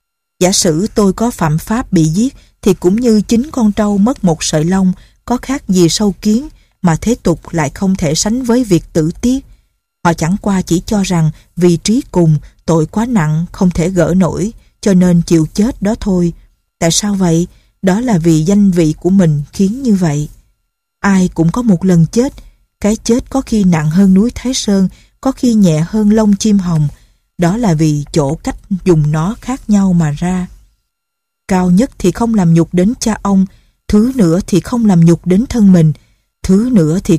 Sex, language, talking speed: female, Vietnamese, 200 wpm